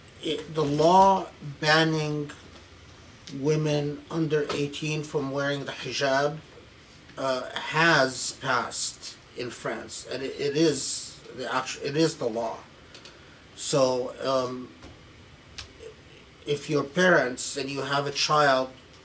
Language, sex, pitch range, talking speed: English, male, 130-155 Hz, 115 wpm